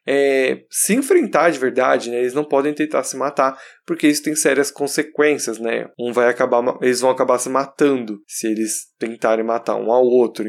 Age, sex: 20-39, male